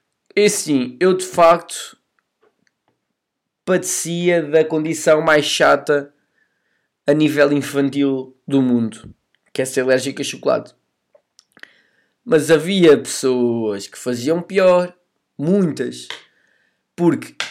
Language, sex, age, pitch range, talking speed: Portuguese, male, 20-39, 135-175 Hz, 100 wpm